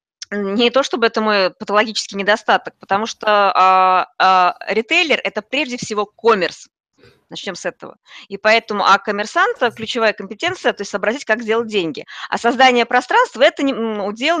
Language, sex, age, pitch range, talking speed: Russian, female, 20-39, 200-260 Hz, 140 wpm